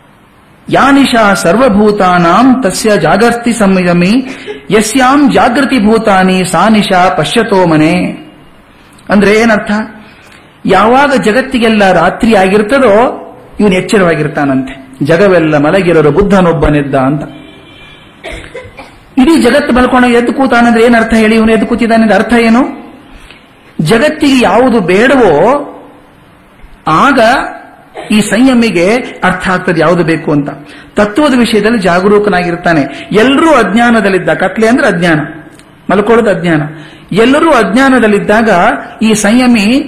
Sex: male